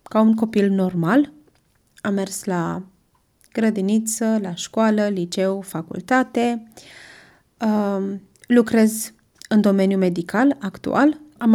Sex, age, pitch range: female, 20-39, 185-215 Hz